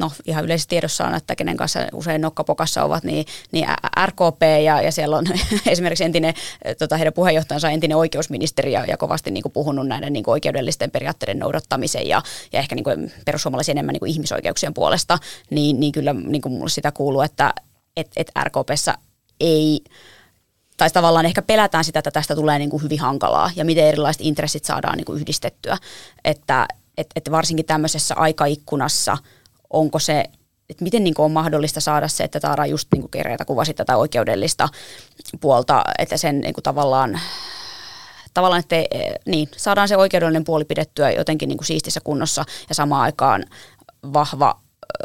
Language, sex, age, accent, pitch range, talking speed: Finnish, female, 20-39, native, 150-165 Hz, 165 wpm